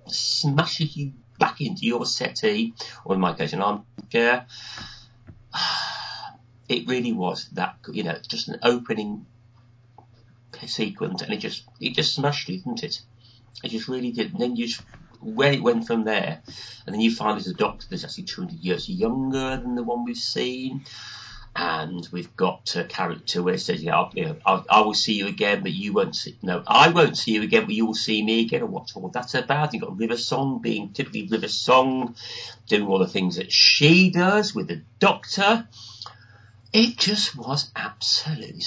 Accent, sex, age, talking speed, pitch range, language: British, male, 40-59, 190 wpm, 110-160 Hz, English